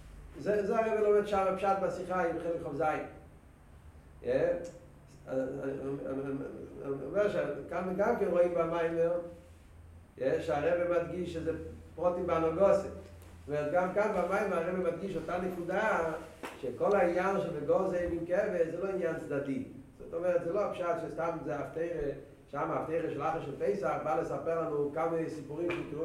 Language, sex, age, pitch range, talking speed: Hebrew, male, 40-59, 160-215 Hz, 130 wpm